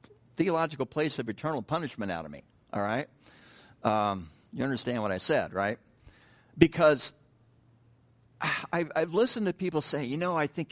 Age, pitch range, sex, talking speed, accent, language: 60-79, 115-145 Hz, male, 155 wpm, American, English